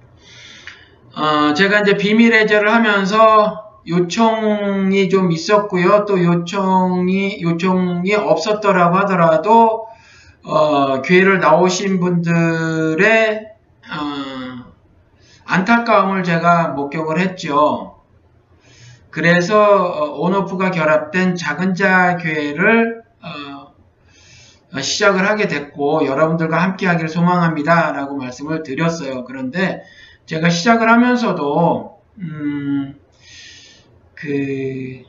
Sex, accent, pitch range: male, native, 140-205 Hz